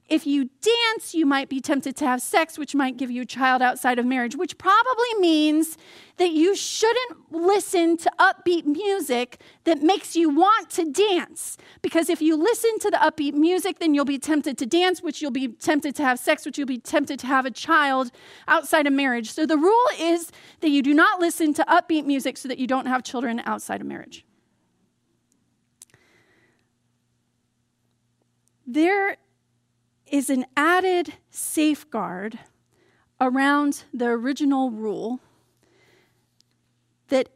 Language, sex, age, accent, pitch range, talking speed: English, female, 40-59, American, 250-335 Hz, 155 wpm